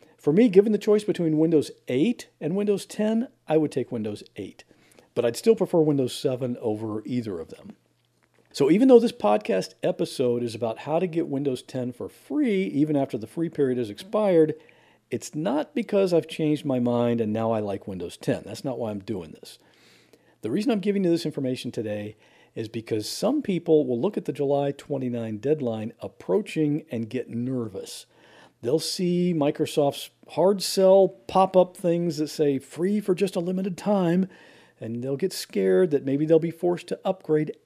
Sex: male